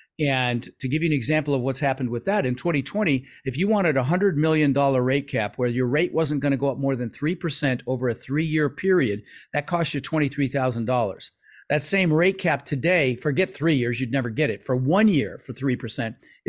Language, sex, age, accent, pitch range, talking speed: English, male, 50-69, American, 130-165 Hz, 205 wpm